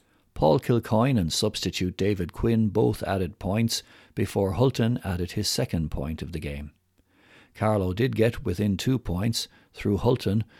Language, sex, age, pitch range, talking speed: English, male, 60-79, 95-120 Hz, 145 wpm